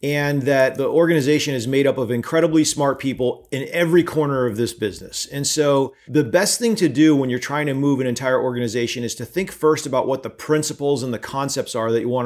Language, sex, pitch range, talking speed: English, male, 130-155 Hz, 230 wpm